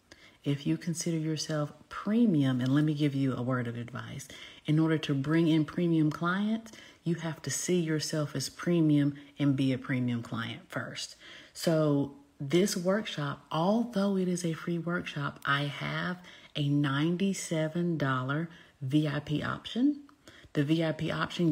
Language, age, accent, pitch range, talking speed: English, 40-59, American, 140-170 Hz, 145 wpm